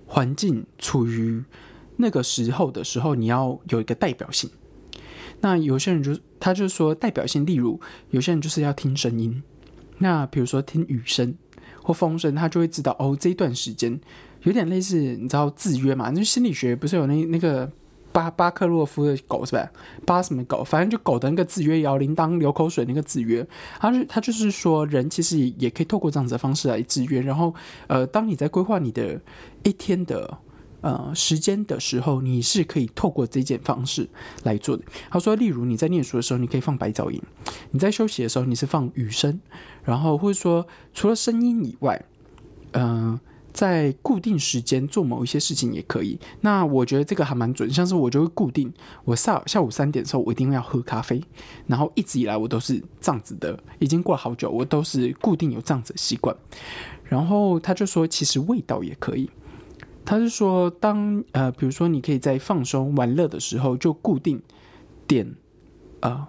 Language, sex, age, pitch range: Chinese, male, 20-39, 130-175 Hz